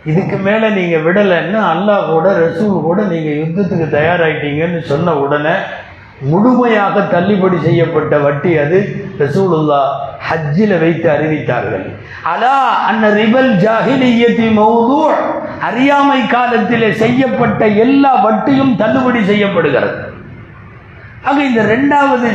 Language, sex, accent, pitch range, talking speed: Tamil, male, native, 165-225 Hz, 35 wpm